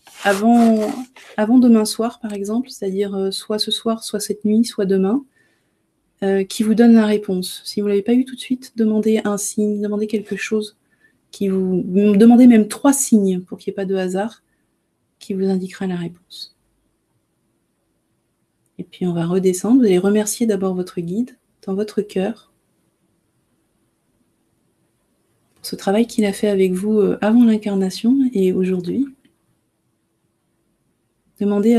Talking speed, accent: 145 wpm, French